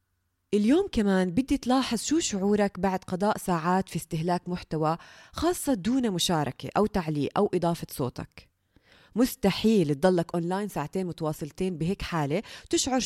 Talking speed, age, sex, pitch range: 130 wpm, 20-39, female, 160-220 Hz